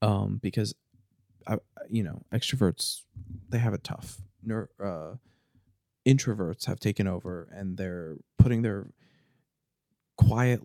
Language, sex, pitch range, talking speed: English, male, 100-130 Hz, 120 wpm